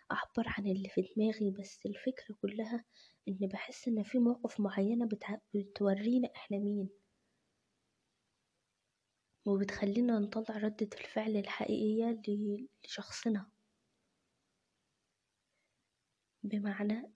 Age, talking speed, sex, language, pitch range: 20-39, 85 wpm, female, Arabic, 200-225 Hz